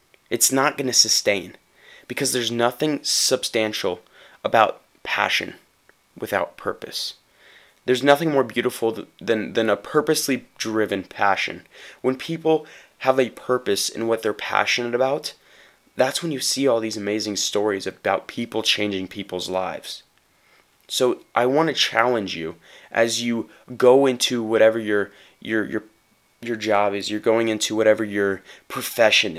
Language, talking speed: English, 140 wpm